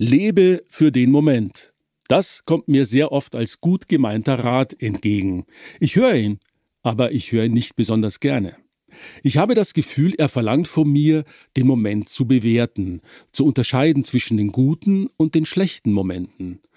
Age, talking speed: 50-69, 160 wpm